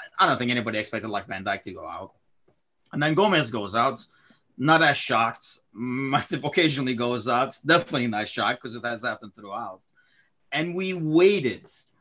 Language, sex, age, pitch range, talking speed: English, male, 30-49, 125-170 Hz, 175 wpm